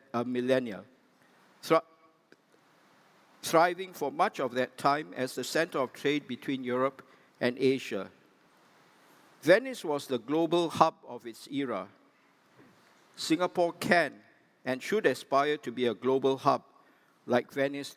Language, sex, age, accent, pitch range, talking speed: English, male, 50-69, Malaysian, 130-160 Hz, 125 wpm